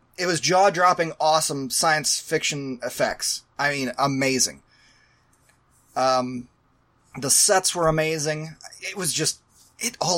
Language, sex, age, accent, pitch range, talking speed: English, male, 30-49, American, 130-185 Hz, 120 wpm